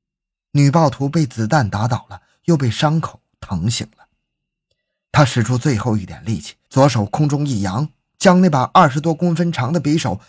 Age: 20-39